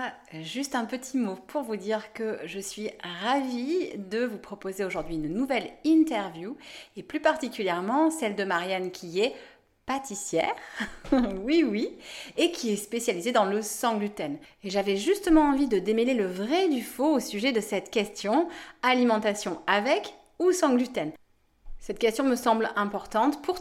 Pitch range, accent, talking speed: 200-265 Hz, French, 165 wpm